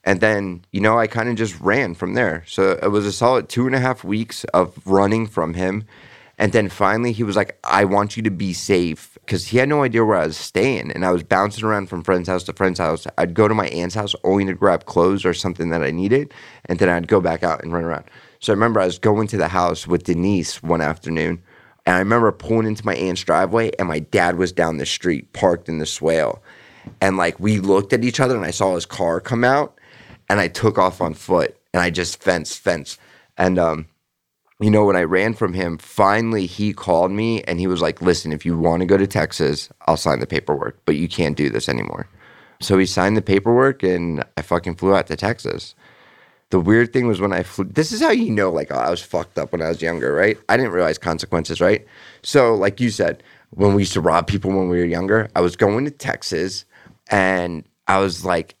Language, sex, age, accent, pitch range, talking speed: English, male, 30-49, American, 85-110 Hz, 240 wpm